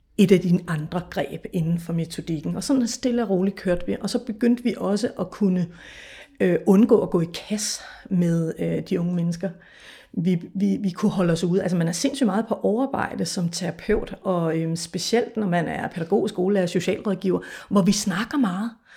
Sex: female